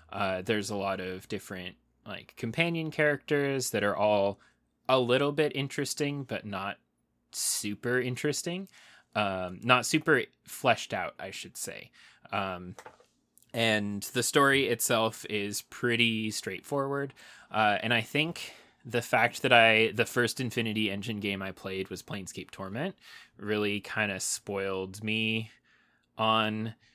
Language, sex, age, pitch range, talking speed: English, male, 20-39, 95-125 Hz, 135 wpm